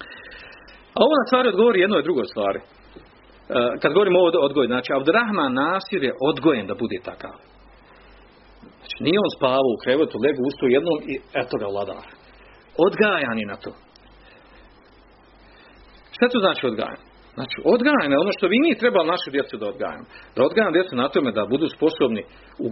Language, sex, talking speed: Croatian, male, 165 wpm